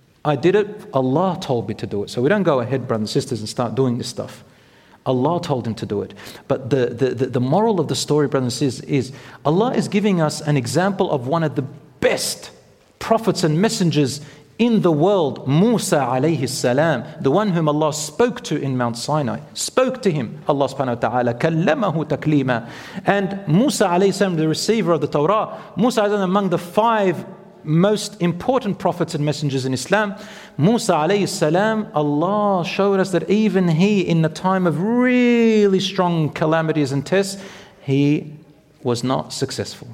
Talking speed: 180 wpm